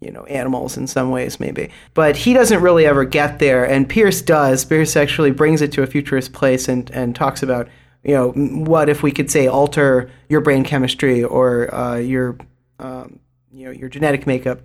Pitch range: 135-160 Hz